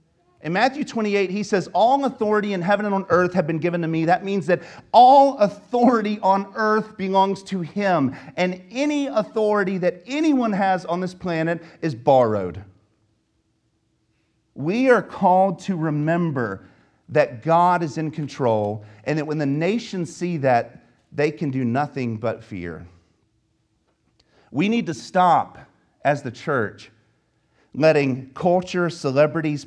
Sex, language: male, English